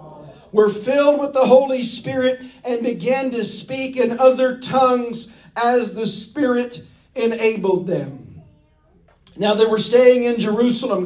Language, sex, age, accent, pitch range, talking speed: English, male, 50-69, American, 205-250 Hz, 130 wpm